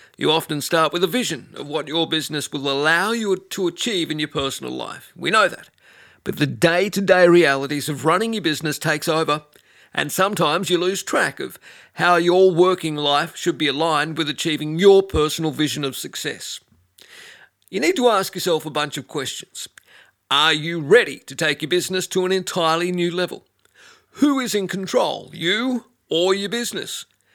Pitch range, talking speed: 150-185 Hz, 180 wpm